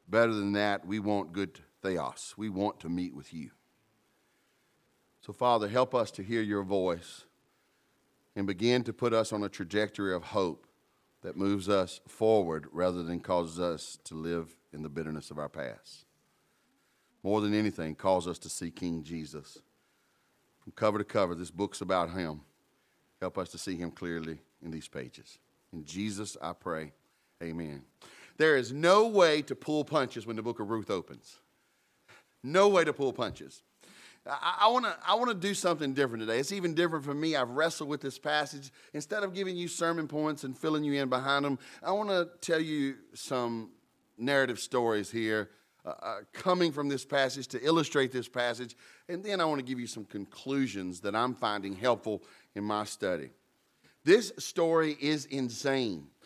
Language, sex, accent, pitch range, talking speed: English, male, American, 100-140 Hz, 175 wpm